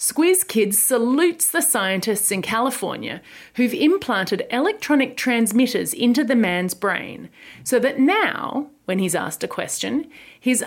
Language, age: English, 30-49